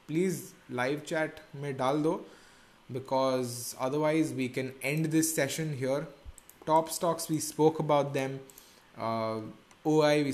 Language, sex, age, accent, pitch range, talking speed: English, male, 20-39, Indian, 125-150 Hz, 135 wpm